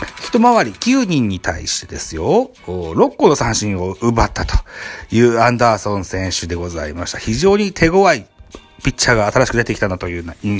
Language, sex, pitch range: Japanese, male, 105-155 Hz